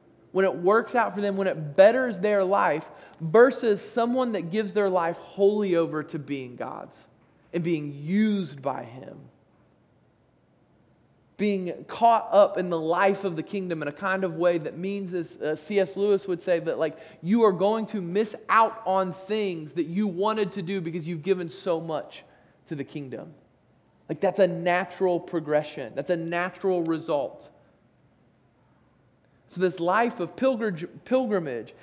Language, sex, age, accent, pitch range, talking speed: English, male, 20-39, American, 165-210 Hz, 160 wpm